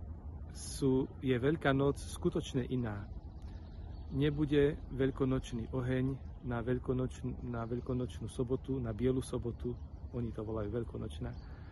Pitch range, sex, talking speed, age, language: 85-135 Hz, male, 110 wpm, 40-59, Slovak